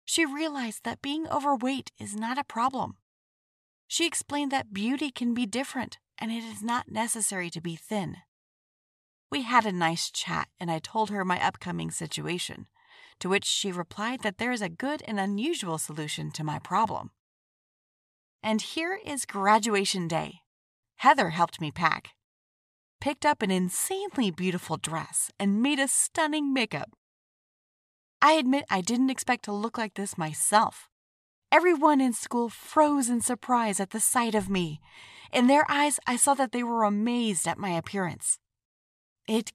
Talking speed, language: 160 wpm, English